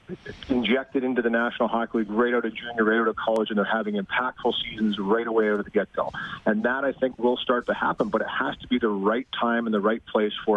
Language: English